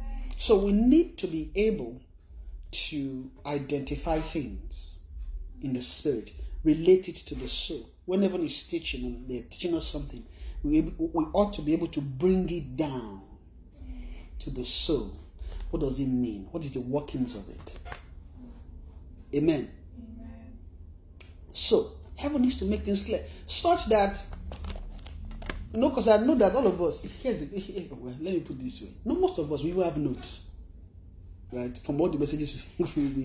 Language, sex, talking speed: English, male, 160 wpm